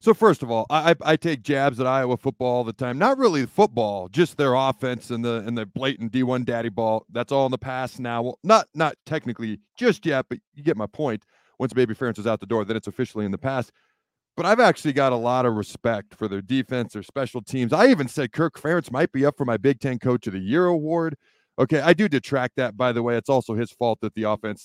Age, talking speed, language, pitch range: 40-59, 255 wpm, English, 120-165 Hz